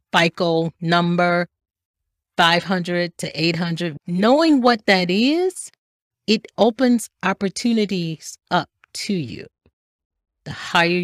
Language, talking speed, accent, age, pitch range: English, 90 wpm, American, 40-59, 145-200 Hz